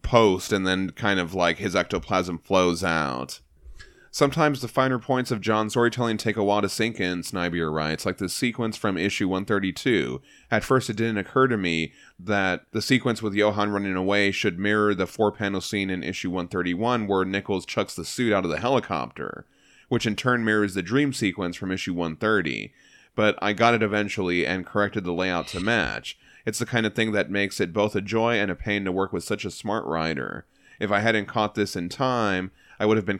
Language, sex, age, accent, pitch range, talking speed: English, male, 30-49, American, 95-110 Hz, 210 wpm